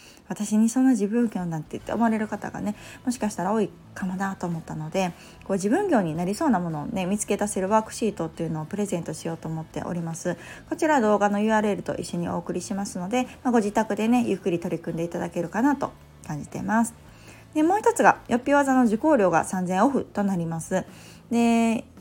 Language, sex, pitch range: Japanese, female, 175-220 Hz